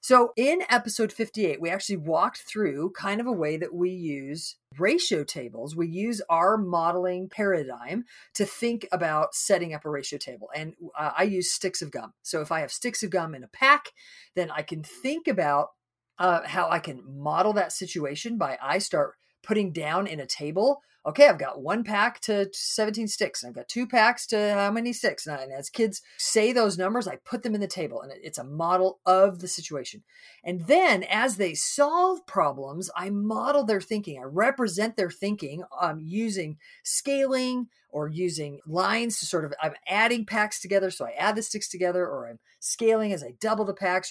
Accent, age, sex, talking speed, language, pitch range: American, 40-59, female, 195 wpm, English, 165-225 Hz